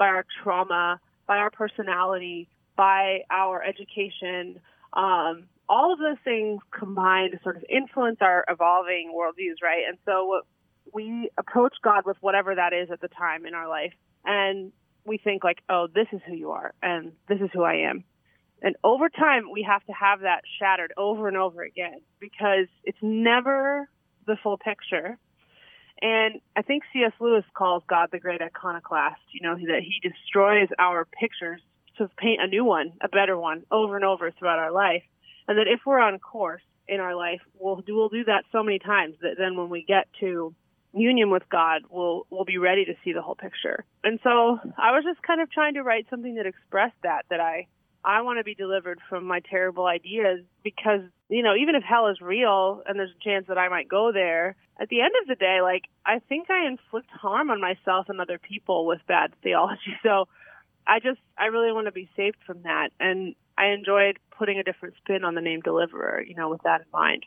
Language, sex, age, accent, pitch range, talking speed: English, female, 30-49, American, 180-215 Hz, 205 wpm